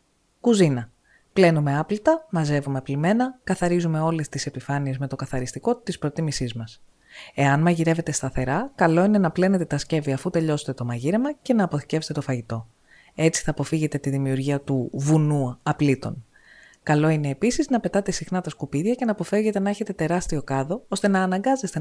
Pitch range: 140-200 Hz